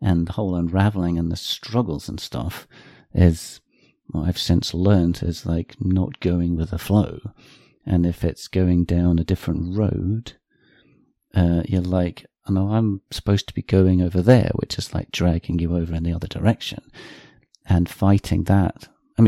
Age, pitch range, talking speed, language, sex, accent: 40-59, 85-105 Hz, 170 wpm, English, male, British